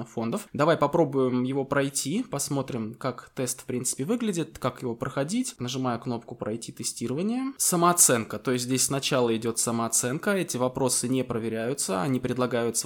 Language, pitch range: Russian, 120-150 Hz